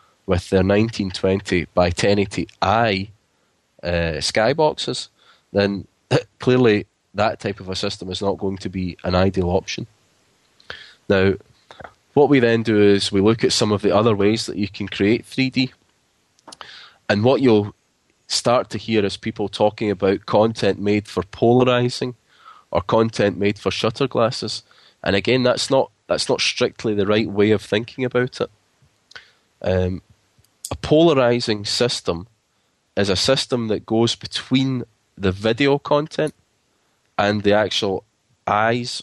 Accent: British